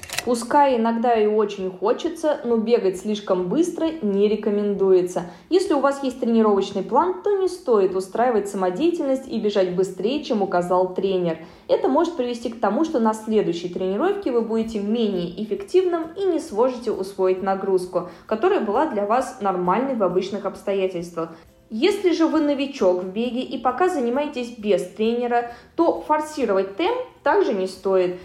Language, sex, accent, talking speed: Russian, female, native, 150 wpm